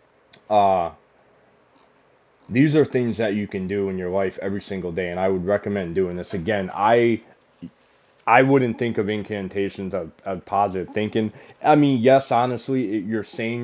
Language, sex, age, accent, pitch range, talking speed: English, male, 20-39, American, 95-120 Hz, 165 wpm